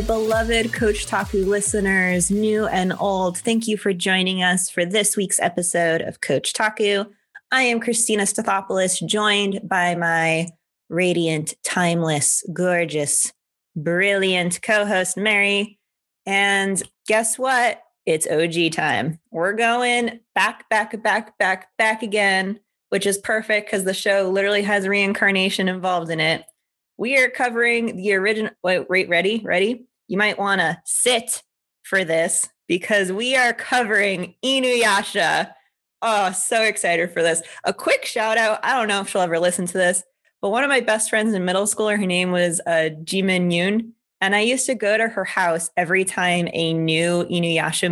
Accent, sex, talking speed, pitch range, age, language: American, female, 160 wpm, 175-220 Hz, 20-39, English